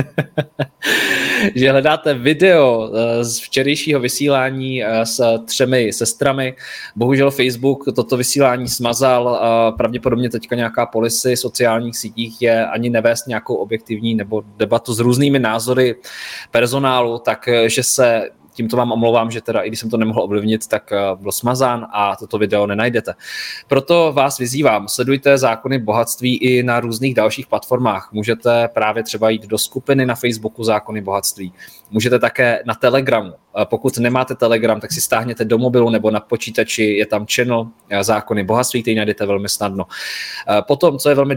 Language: Czech